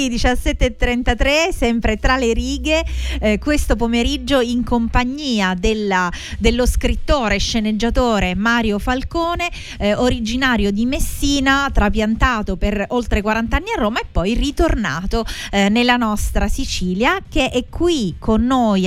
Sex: female